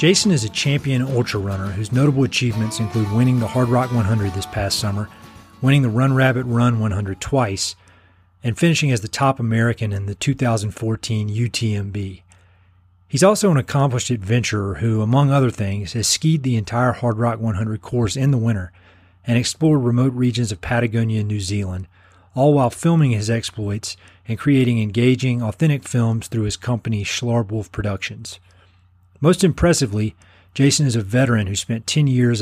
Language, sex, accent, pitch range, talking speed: English, male, American, 100-125 Hz, 165 wpm